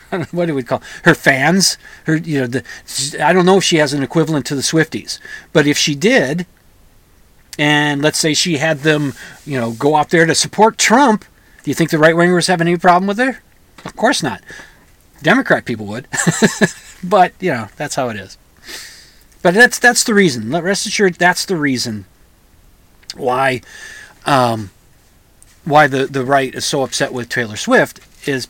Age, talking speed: 40-59, 185 wpm